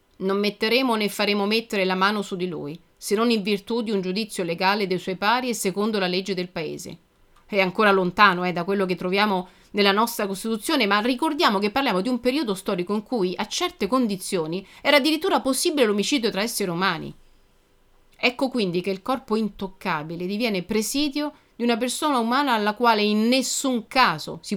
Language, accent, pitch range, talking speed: Italian, native, 185-235 Hz, 185 wpm